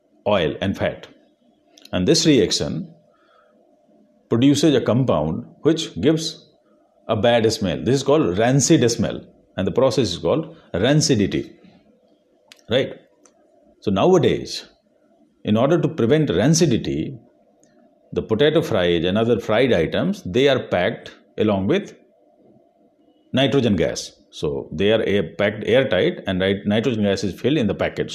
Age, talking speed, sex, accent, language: 50-69, 130 wpm, male, native, Hindi